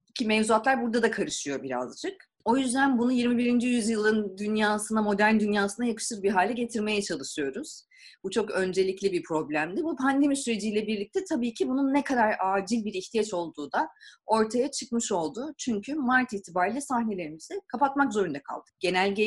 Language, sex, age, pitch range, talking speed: Turkish, female, 30-49, 185-240 Hz, 155 wpm